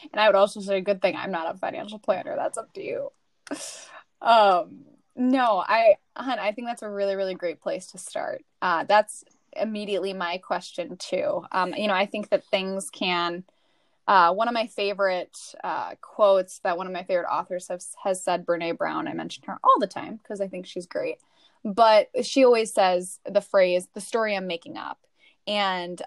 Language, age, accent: English, 10-29, American